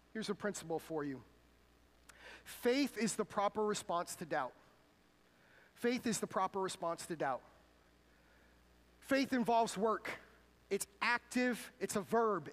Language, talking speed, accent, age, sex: English, 130 wpm, American, 30-49, male